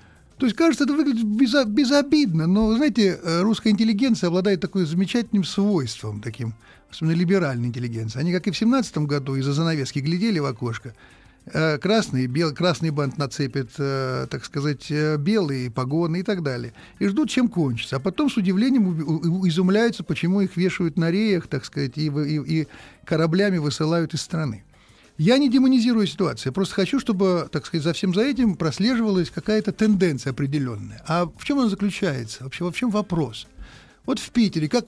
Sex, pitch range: male, 140-205 Hz